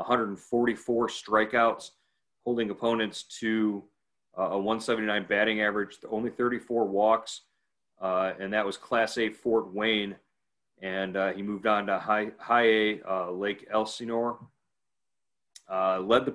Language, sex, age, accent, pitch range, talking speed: English, male, 30-49, American, 95-115 Hz, 130 wpm